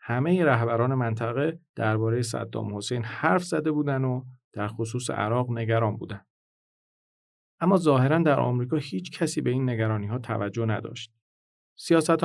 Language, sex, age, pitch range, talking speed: Persian, male, 50-69, 115-155 Hz, 135 wpm